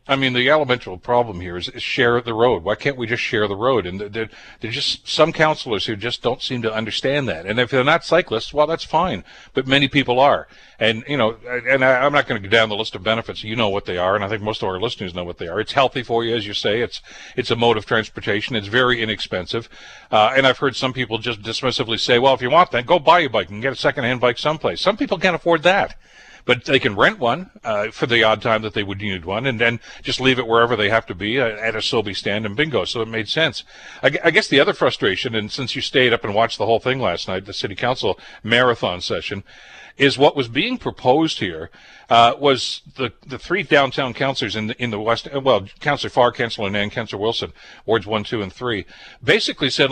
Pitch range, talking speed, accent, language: 110-135 Hz, 250 wpm, American, English